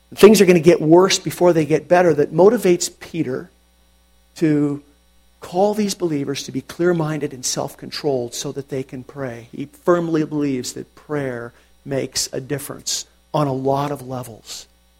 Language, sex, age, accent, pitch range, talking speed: English, male, 50-69, American, 125-205 Hz, 160 wpm